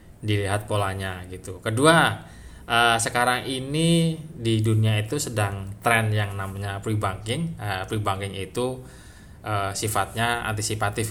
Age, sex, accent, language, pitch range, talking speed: 20-39, male, native, Indonesian, 100-120 Hz, 115 wpm